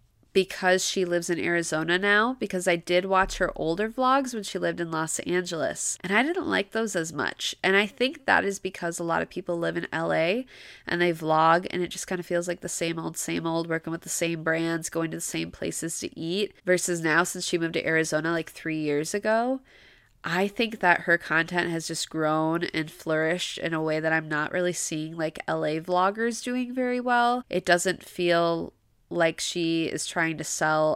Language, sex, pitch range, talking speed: English, female, 160-185 Hz, 215 wpm